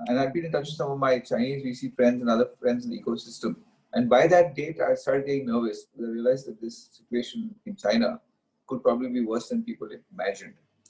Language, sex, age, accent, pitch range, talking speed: English, male, 30-49, Indian, 120-170 Hz, 225 wpm